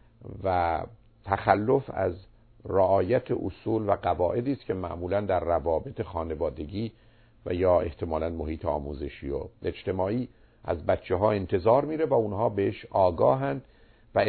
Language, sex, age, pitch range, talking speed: Persian, male, 50-69, 90-115 Hz, 120 wpm